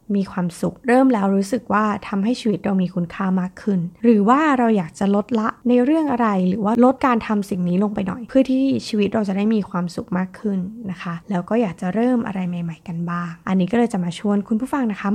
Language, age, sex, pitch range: Thai, 20-39, female, 195-255 Hz